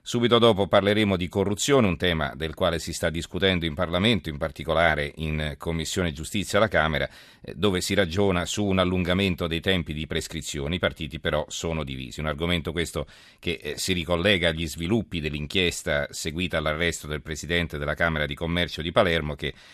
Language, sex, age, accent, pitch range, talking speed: Italian, male, 40-59, native, 75-95 Hz, 170 wpm